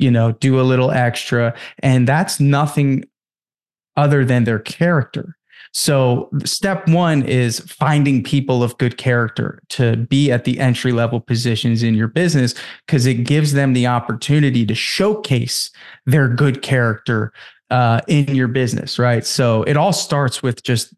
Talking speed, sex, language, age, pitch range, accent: 150 wpm, male, English, 20-39, 120-150 Hz, American